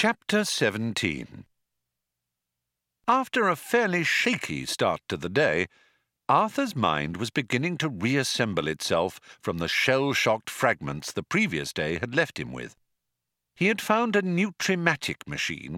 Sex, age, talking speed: male, 50-69, 130 wpm